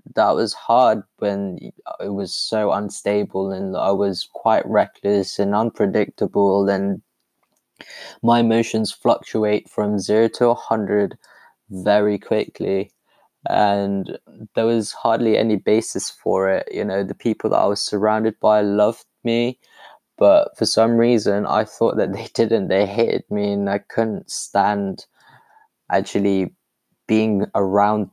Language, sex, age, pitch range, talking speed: English, male, 20-39, 100-115 Hz, 135 wpm